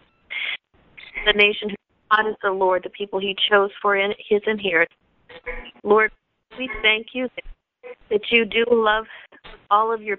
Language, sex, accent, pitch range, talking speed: English, female, American, 180-210 Hz, 155 wpm